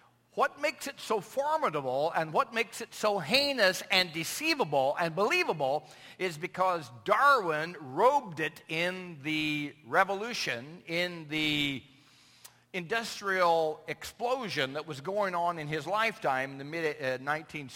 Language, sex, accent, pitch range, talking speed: English, male, American, 145-195 Hz, 130 wpm